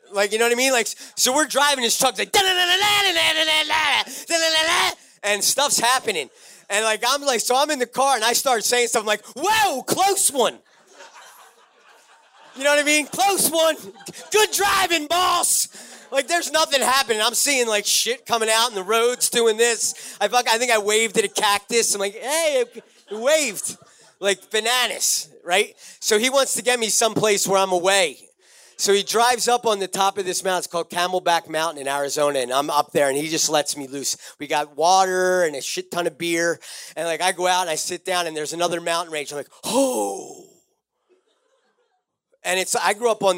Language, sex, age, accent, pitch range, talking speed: English, male, 30-49, American, 180-280 Hz, 200 wpm